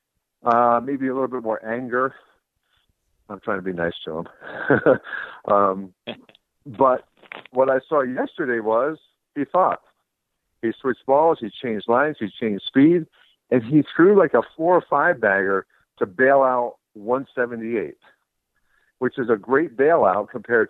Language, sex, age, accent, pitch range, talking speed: English, male, 60-79, American, 115-140 Hz, 150 wpm